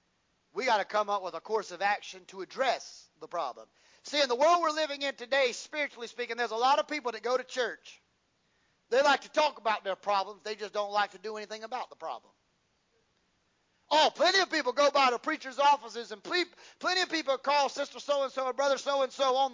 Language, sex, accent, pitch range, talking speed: English, male, American, 220-280 Hz, 220 wpm